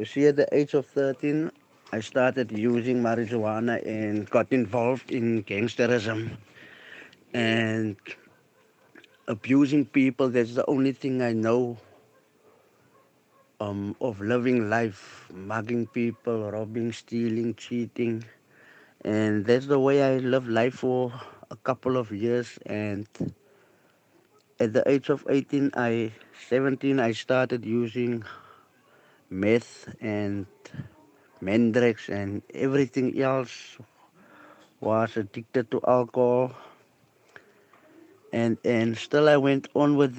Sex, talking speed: male, 110 wpm